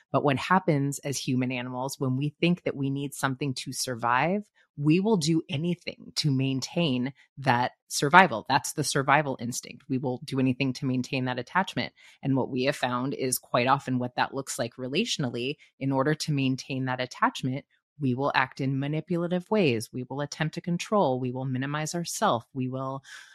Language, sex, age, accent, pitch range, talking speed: English, female, 30-49, American, 130-160 Hz, 180 wpm